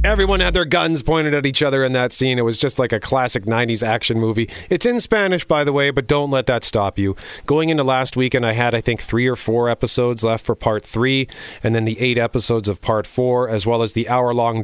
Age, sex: 40-59, male